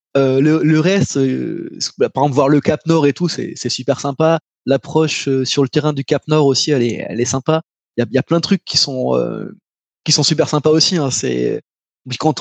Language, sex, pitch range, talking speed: French, male, 135-175 Hz, 235 wpm